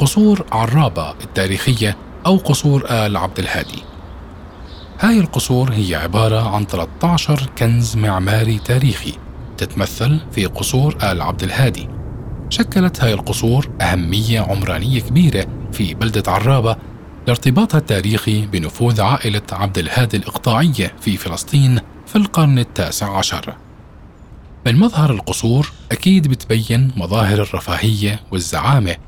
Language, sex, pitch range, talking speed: Arabic, male, 95-135 Hz, 110 wpm